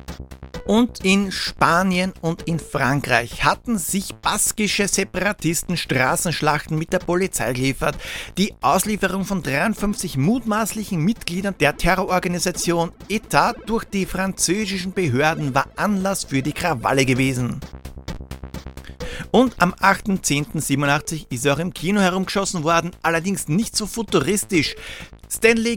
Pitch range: 140-195 Hz